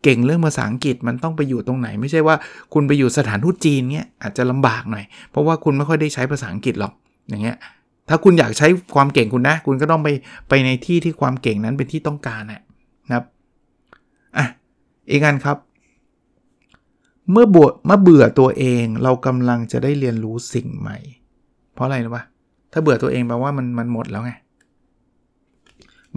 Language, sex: Thai, male